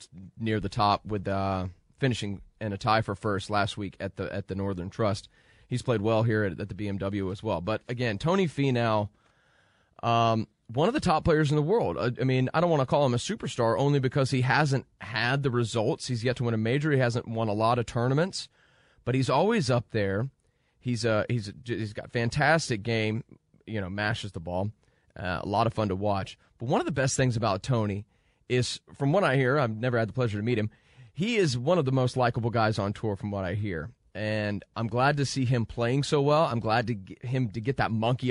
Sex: male